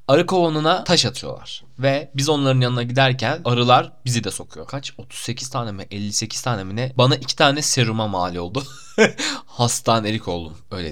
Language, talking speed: Turkish, 165 wpm